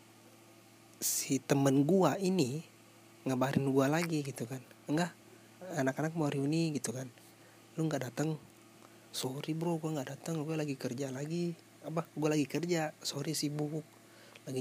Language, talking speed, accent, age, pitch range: Indonesian, 140 wpm, native, 30-49, 115-150 Hz